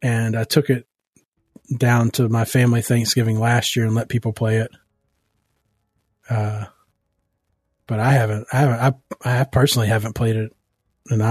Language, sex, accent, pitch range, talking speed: English, male, American, 110-150 Hz, 155 wpm